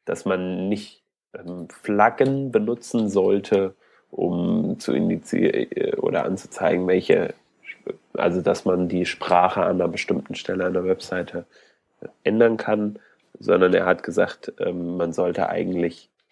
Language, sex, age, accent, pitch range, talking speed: German, male, 30-49, German, 90-125 Hz, 125 wpm